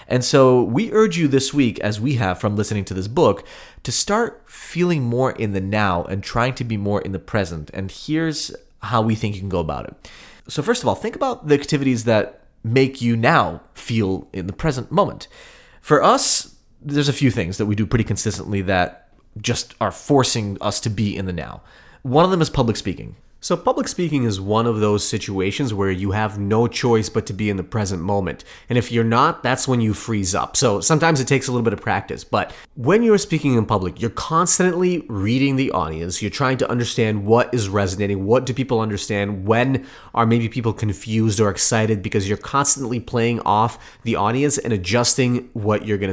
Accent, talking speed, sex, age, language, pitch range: American, 210 wpm, male, 30-49, English, 105-130 Hz